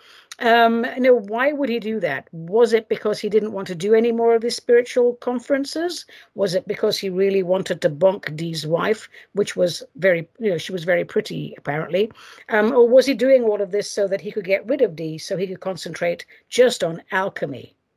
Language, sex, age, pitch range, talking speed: English, female, 60-79, 180-250 Hz, 215 wpm